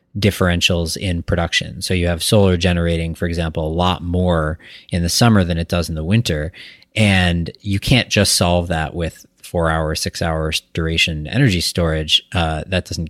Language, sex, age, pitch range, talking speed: English, male, 30-49, 80-100 Hz, 180 wpm